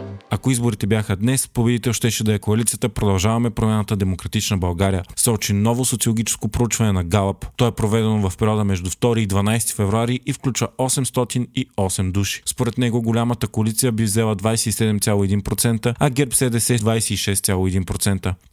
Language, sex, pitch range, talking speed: Bulgarian, male, 100-120 Hz, 145 wpm